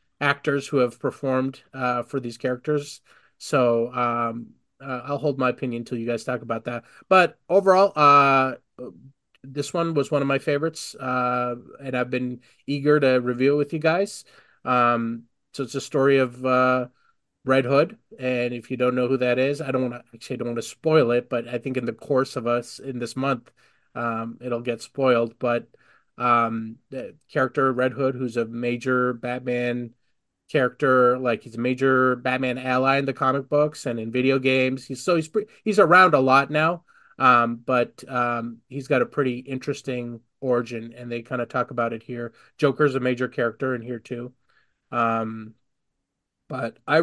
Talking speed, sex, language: 180 wpm, male, English